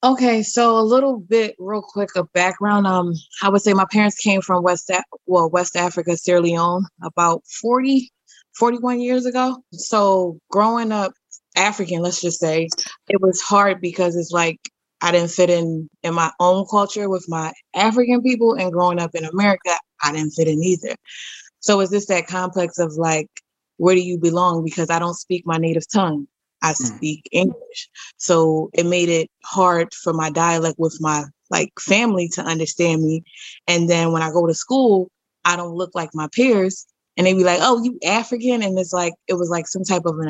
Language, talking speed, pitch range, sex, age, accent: English, 195 wpm, 165-195 Hz, female, 20-39, American